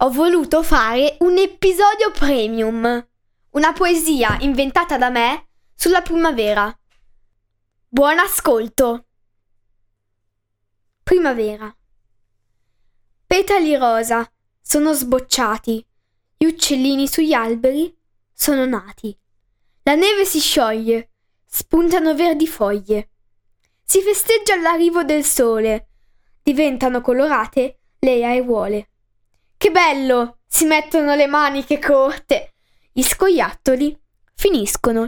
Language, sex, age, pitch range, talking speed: Italian, female, 10-29, 215-315 Hz, 90 wpm